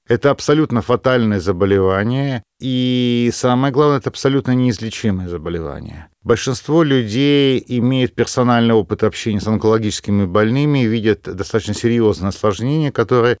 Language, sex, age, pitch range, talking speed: Russian, male, 40-59, 110-130 Hz, 115 wpm